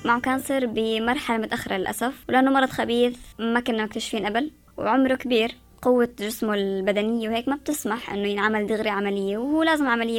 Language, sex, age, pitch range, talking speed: Arabic, male, 20-39, 220-270 Hz, 160 wpm